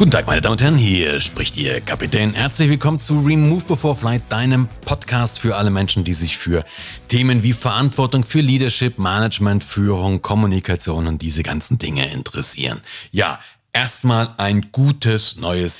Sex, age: male, 40-59